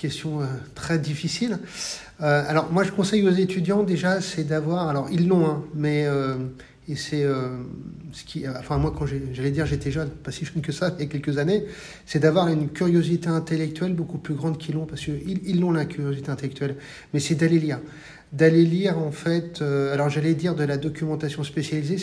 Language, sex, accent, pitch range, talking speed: French, male, French, 145-175 Hz, 205 wpm